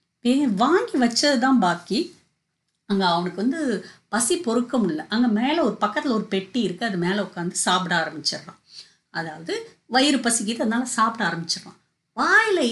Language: English